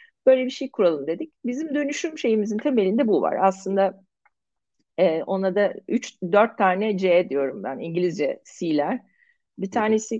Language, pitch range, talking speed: Turkish, 185-225 Hz, 140 wpm